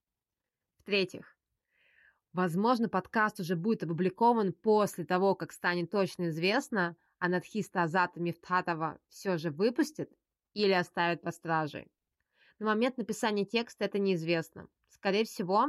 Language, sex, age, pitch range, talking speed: Russian, female, 20-39, 170-205 Hz, 120 wpm